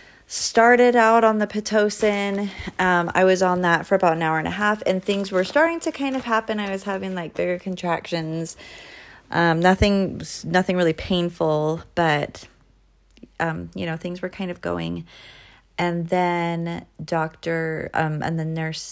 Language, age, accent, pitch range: English, 30-49, American, 155-185 Hz